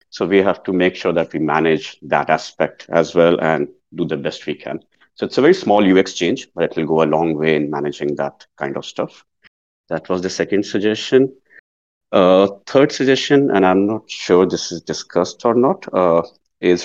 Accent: Indian